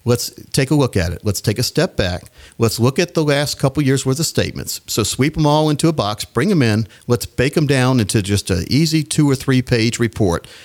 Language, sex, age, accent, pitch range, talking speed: English, male, 50-69, American, 105-145 Hz, 250 wpm